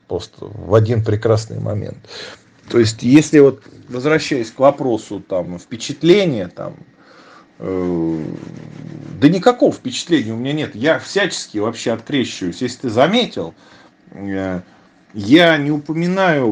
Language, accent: Russian, native